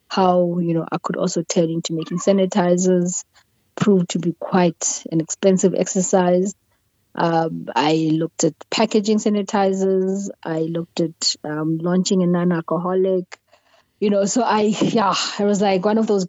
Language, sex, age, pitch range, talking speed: English, female, 20-39, 170-195 Hz, 150 wpm